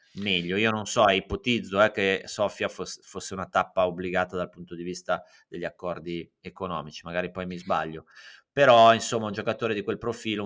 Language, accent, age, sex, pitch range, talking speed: Italian, native, 30-49, male, 90-115 Hz, 170 wpm